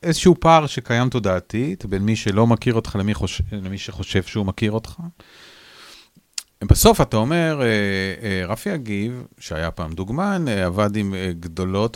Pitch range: 100-145 Hz